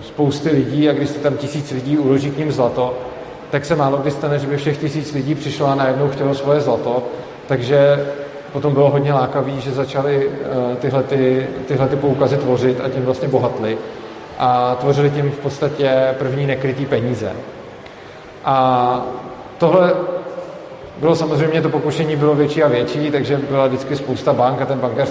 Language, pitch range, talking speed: Czech, 130-150 Hz, 160 wpm